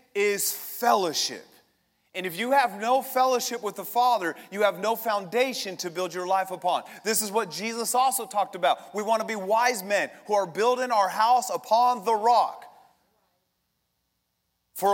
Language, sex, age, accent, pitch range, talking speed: English, male, 30-49, American, 205-260 Hz, 170 wpm